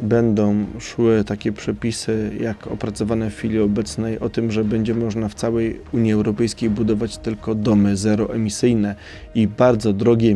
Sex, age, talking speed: male, 20-39, 145 wpm